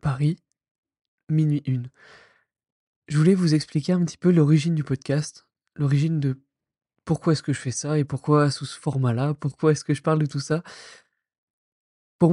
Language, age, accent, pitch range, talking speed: French, 20-39, French, 150-185 Hz, 175 wpm